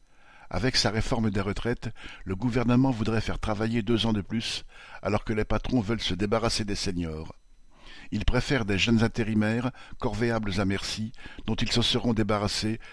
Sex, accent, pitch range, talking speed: male, French, 100-115 Hz, 165 wpm